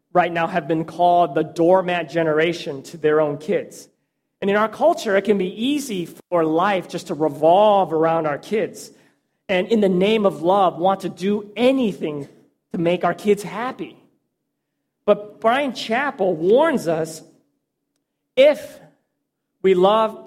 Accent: American